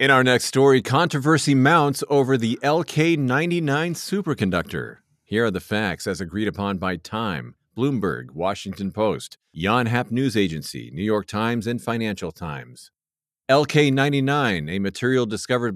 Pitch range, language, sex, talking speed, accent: 100-135 Hz, English, male, 135 wpm, American